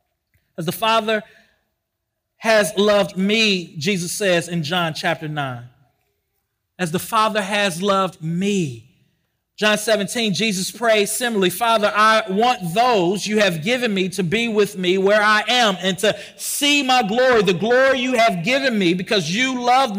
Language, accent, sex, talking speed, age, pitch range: English, American, male, 155 wpm, 40-59, 175-215 Hz